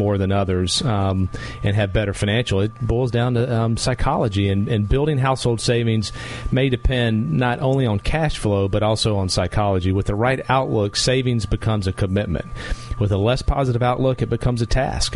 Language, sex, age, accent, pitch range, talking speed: English, male, 40-59, American, 100-120 Hz, 185 wpm